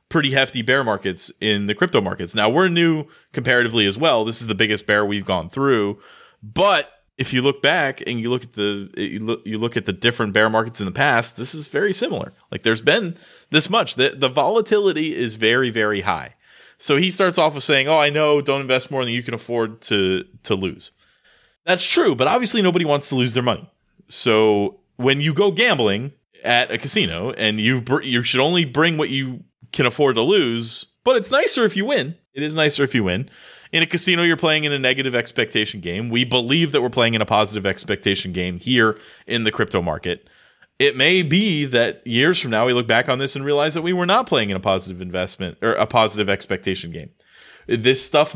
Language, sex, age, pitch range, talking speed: English, male, 30-49, 110-155 Hz, 220 wpm